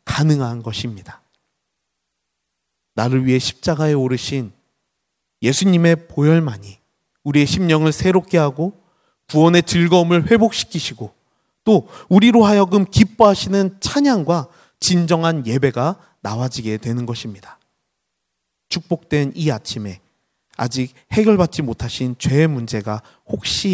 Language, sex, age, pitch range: Korean, male, 30-49, 115-160 Hz